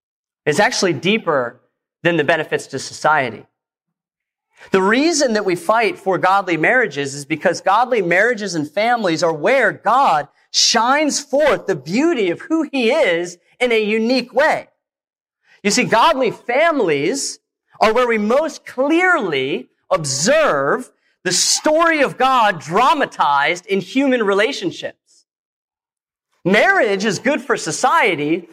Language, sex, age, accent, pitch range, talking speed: English, male, 30-49, American, 145-230 Hz, 125 wpm